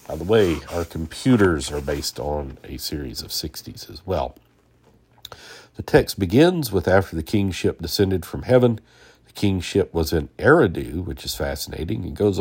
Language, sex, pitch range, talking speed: English, male, 80-100 Hz, 165 wpm